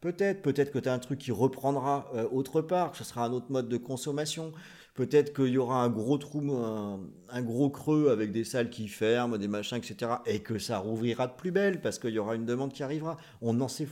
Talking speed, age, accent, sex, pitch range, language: 220 wpm, 40-59, French, male, 105-150 Hz, French